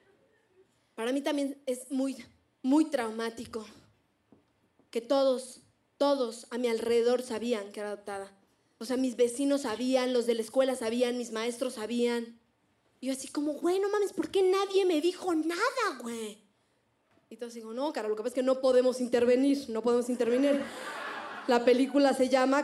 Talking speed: 170 wpm